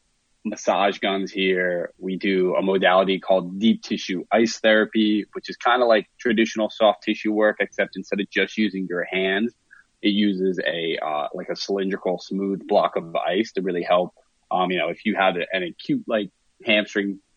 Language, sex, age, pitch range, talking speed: English, male, 20-39, 90-105 Hz, 180 wpm